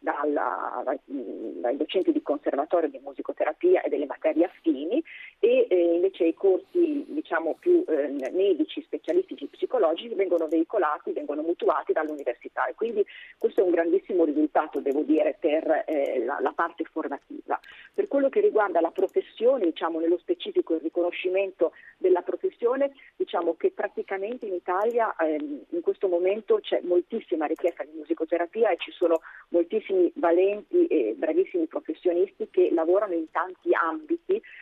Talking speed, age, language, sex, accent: 145 wpm, 40-59, Italian, female, native